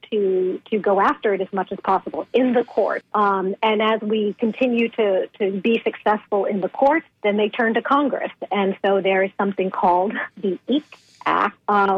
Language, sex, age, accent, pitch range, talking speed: English, female, 50-69, American, 195-235 Hz, 195 wpm